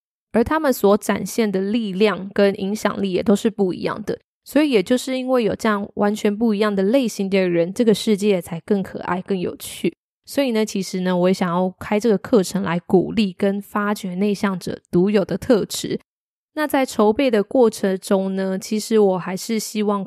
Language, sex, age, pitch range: Chinese, female, 20-39, 190-215 Hz